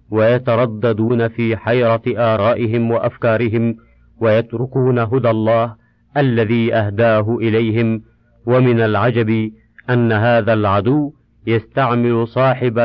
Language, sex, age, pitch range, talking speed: Arabic, male, 50-69, 110-140 Hz, 85 wpm